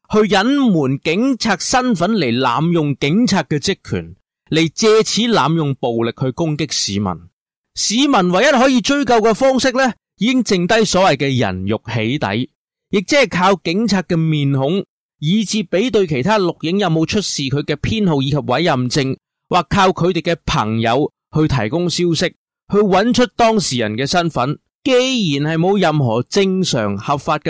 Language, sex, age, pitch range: English, male, 30-49, 130-200 Hz